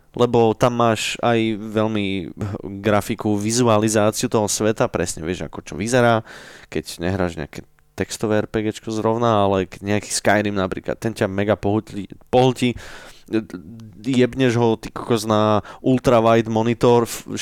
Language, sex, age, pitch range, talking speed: Slovak, male, 20-39, 100-125 Hz, 115 wpm